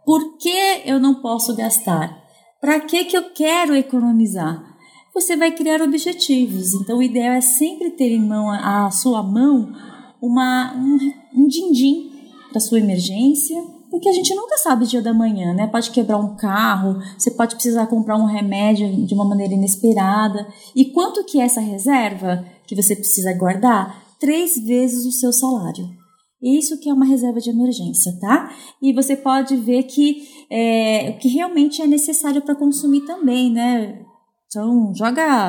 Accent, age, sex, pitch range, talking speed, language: Brazilian, 20-39, female, 215-285 Hz, 165 wpm, Portuguese